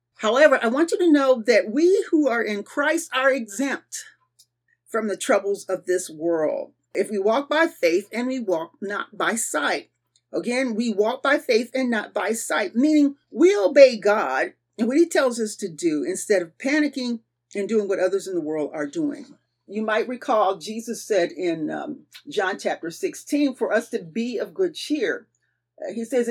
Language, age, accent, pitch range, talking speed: English, 40-59, American, 205-300 Hz, 185 wpm